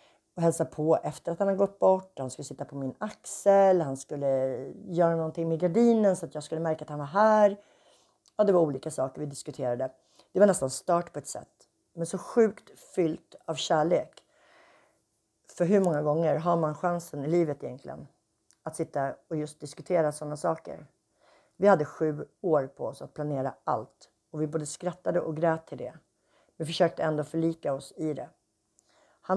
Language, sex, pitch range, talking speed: Swedish, female, 150-185 Hz, 190 wpm